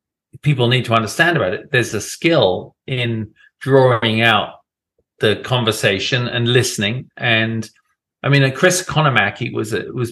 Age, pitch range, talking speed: 40-59, 115-155 Hz, 140 wpm